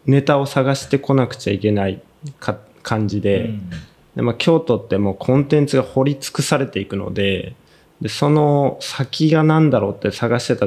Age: 20-39